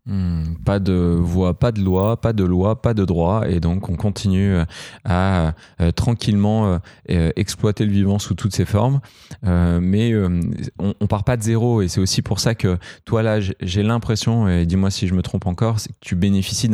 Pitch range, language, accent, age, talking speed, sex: 90-115 Hz, French, French, 20-39, 210 wpm, male